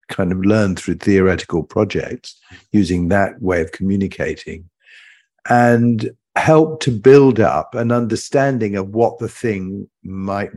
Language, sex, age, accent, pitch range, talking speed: English, male, 50-69, British, 95-125 Hz, 130 wpm